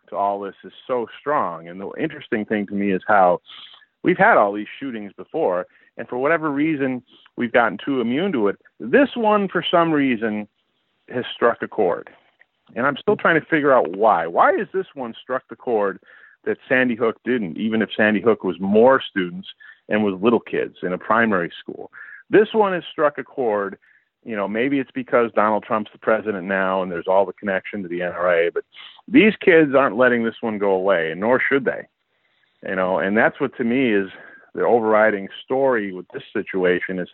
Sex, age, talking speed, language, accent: male, 40-59, 200 wpm, English, American